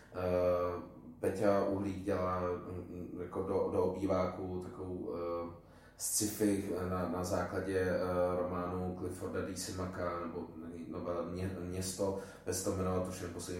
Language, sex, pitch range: Czech, male, 90-105 Hz